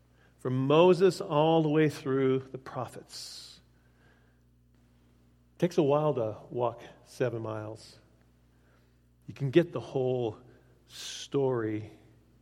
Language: English